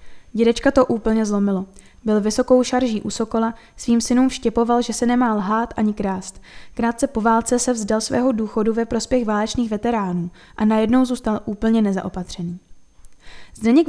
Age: 10-29